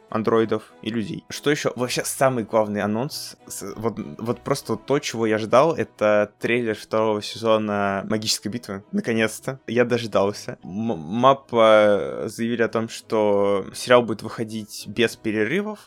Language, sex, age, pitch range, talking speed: Russian, male, 20-39, 110-130 Hz, 130 wpm